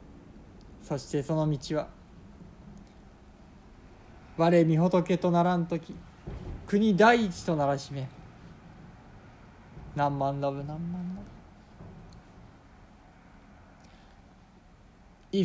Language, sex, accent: Japanese, male, native